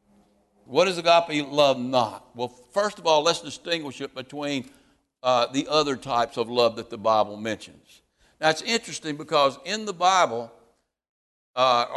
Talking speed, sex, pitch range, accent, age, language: 155 wpm, male, 140-180 Hz, American, 60-79, English